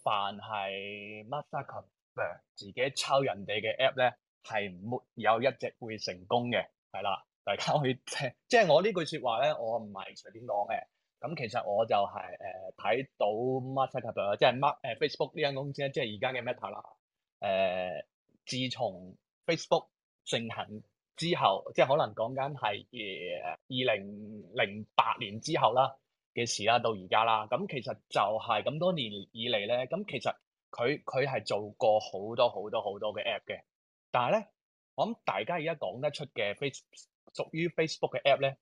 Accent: native